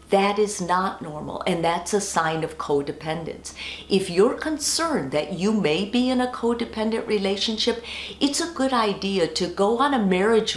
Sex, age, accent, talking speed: female, 50-69, American, 170 wpm